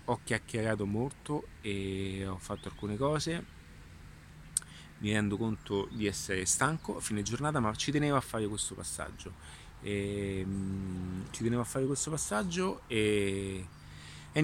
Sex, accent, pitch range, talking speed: male, native, 100-140 Hz, 135 wpm